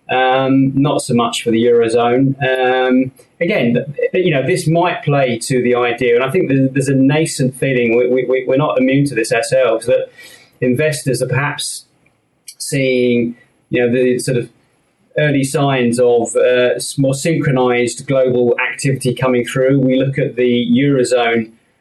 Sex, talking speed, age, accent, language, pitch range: male, 155 wpm, 30-49, British, English, 120-140 Hz